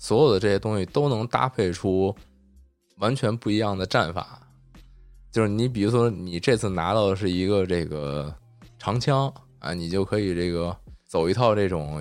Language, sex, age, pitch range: Chinese, male, 20-39, 85-110 Hz